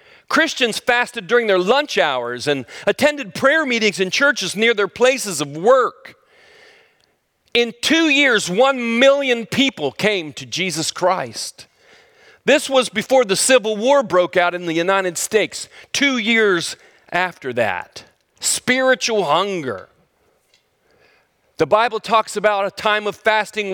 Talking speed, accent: 135 wpm, American